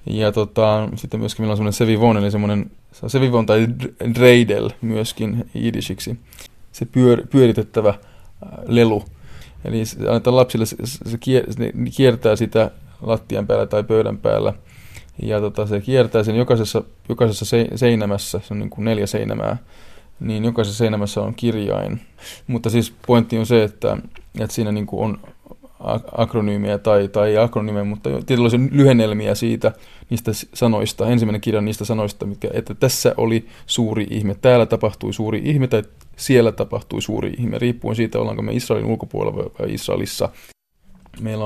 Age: 20-39